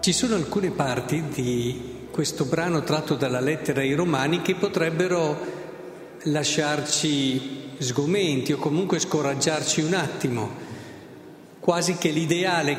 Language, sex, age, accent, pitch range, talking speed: Italian, male, 50-69, native, 145-180 Hz, 115 wpm